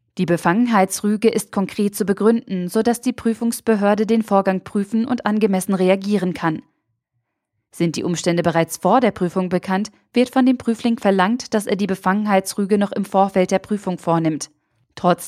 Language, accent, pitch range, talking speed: German, German, 175-215 Hz, 155 wpm